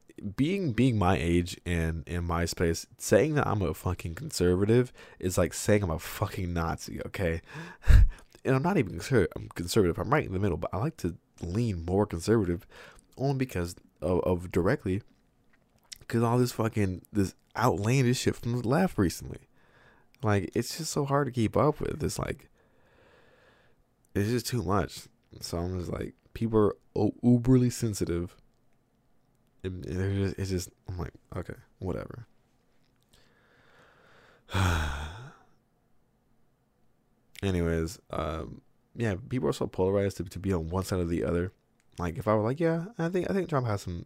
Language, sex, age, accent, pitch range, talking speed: English, male, 20-39, American, 85-120 Hz, 155 wpm